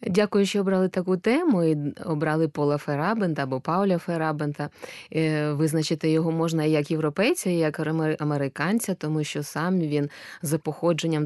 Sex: female